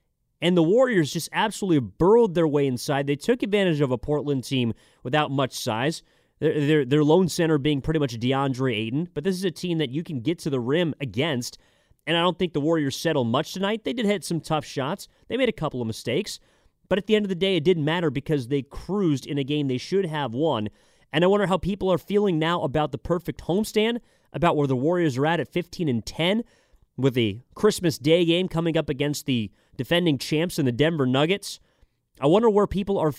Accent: American